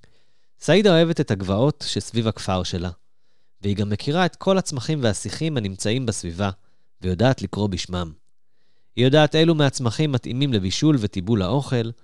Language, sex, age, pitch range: Hebrew, male, 30-49, 100-155 Hz